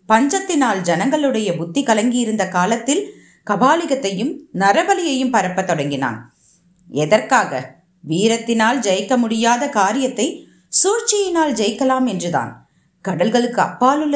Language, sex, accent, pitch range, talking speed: Tamil, female, native, 195-290 Hz, 80 wpm